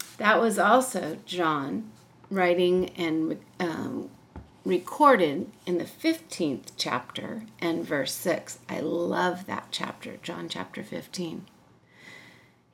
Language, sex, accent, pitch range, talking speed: English, female, American, 170-215 Hz, 105 wpm